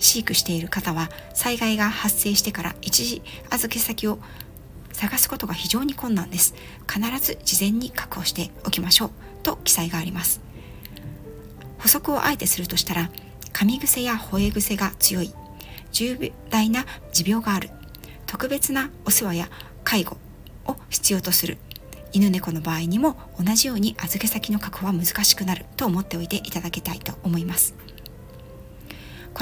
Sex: female